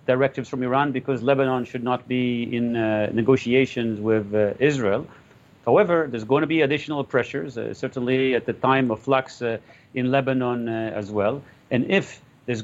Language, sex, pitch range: English, male, 115-140 Hz